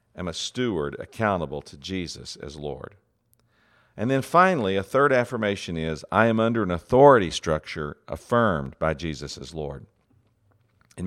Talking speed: 145 wpm